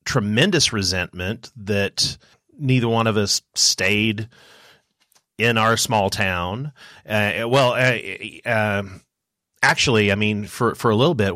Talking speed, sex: 125 wpm, male